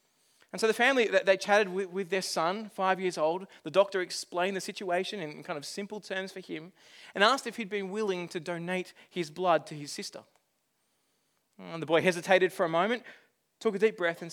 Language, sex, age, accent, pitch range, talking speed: English, male, 20-39, Australian, 180-230 Hz, 205 wpm